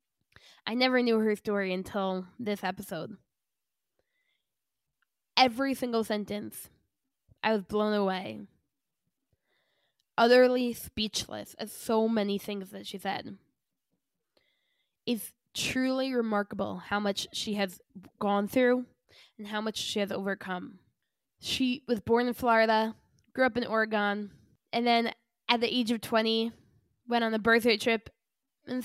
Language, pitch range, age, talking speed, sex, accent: English, 205-240 Hz, 10-29, 125 wpm, female, American